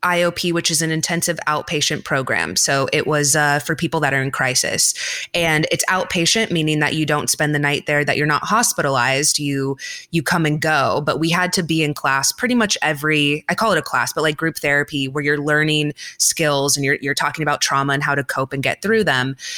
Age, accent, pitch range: 20-39, American, 145-170 Hz